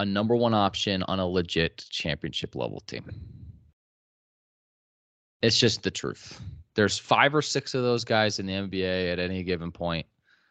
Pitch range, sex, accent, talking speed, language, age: 90-120 Hz, male, American, 155 wpm, English, 20-39